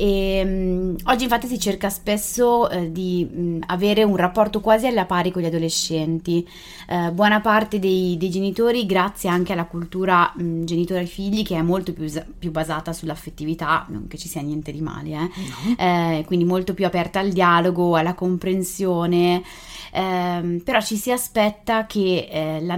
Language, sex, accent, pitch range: Italian, female, native, 170-205 Hz